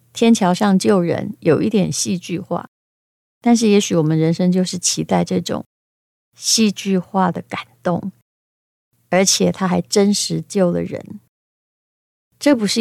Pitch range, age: 180-220 Hz, 30-49